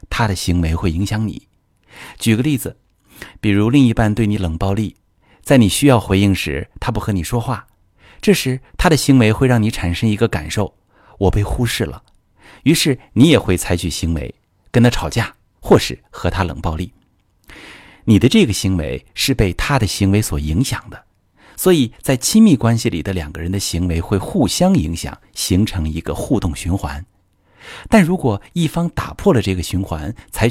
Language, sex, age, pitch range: Chinese, male, 50-69, 85-120 Hz